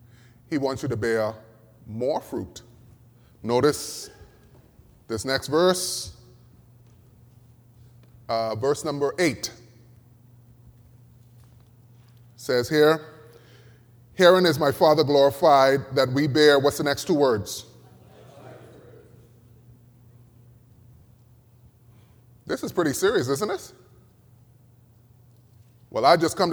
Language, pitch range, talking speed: English, 120-150 Hz, 95 wpm